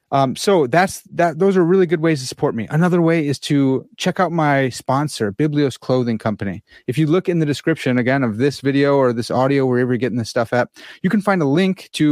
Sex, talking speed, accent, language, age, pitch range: male, 240 wpm, American, English, 30-49, 120-160 Hz